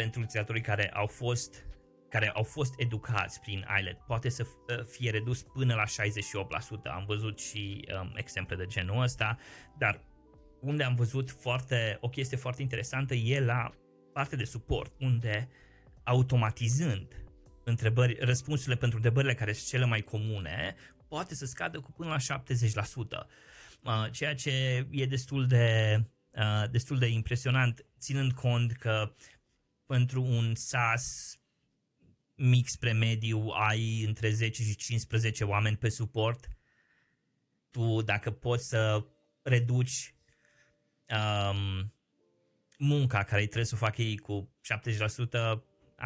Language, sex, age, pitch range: Romanian, male, 20-39, 105-125 Hz